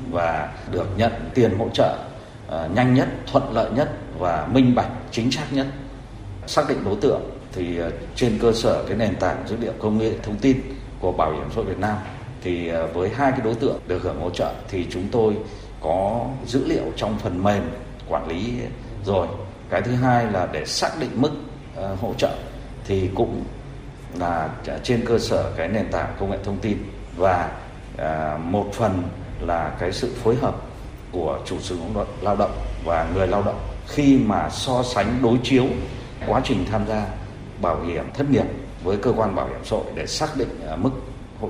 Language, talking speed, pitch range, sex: Vietnamese, 190 wpm, 95-130 Hz, male